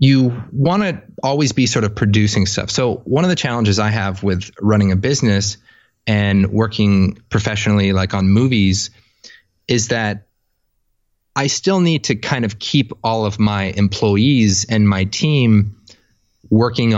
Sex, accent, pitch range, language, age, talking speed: male, American, 100-120 Hz, English, 30-49, 150 wpm